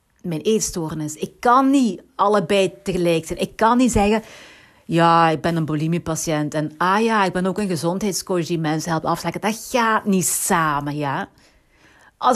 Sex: female